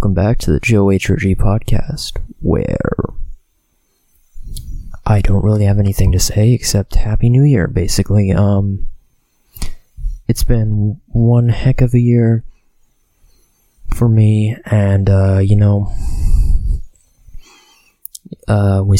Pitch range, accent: 90-110 Hz, American